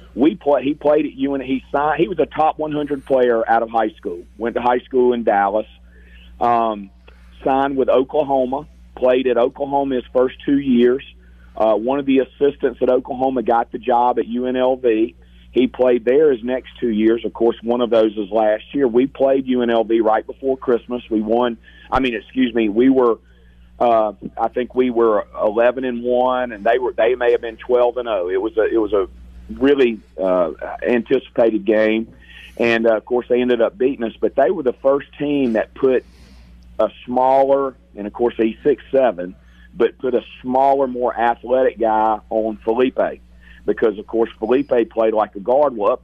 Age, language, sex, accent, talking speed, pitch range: 40-59, English, male, American, 195 wpm, 110-130 Hz